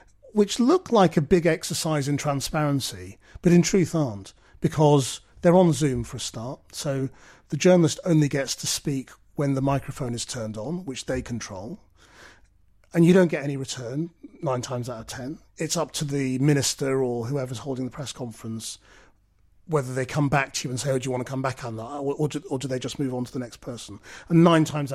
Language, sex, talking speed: English, male, 210 wpm